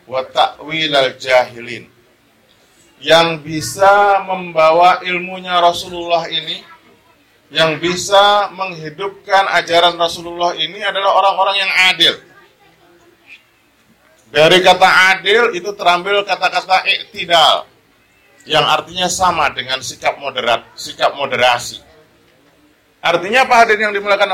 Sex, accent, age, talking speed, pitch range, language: male, native, 40-59, 90 wpm, 160-210 Hz, Indonesian